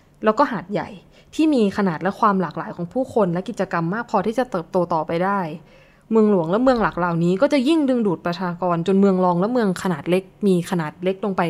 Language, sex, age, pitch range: Thai, female, 20-39, 170-225 Hz